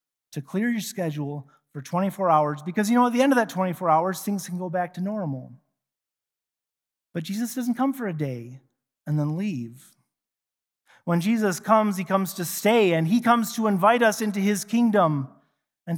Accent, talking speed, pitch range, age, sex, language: American, 190 wpm, 150-215 Hz, 30-49, male, English